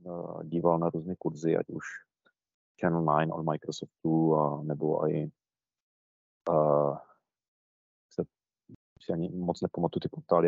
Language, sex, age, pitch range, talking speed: Czech, male, 30-49, 75-85 Hz, 110 wpm